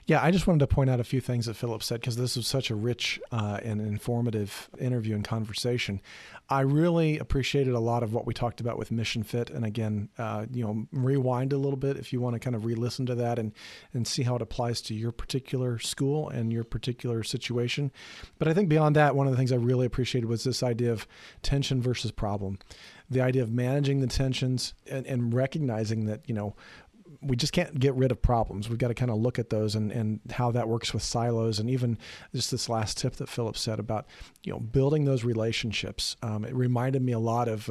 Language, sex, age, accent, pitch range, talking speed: English, male, 40-59, American, 110-130 Hz, 230 wpm